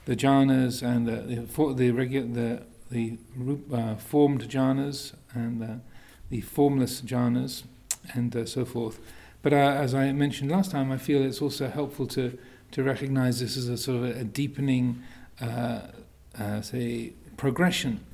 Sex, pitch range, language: male, 120-135 Hz, English